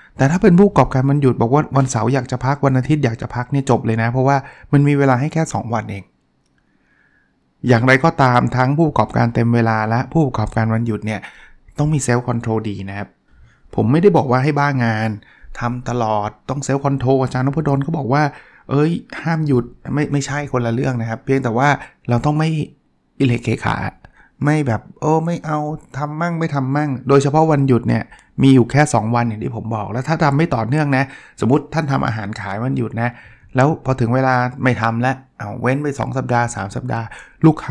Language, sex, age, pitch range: Thai, male, 20-39, 115-145 Hz